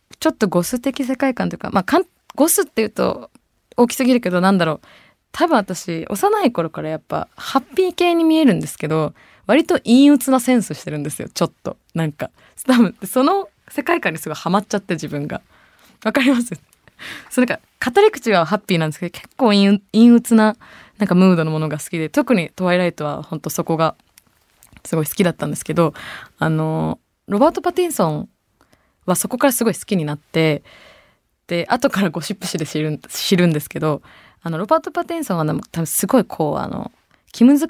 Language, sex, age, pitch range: Japanese, female, 20-39, 160-245 Hz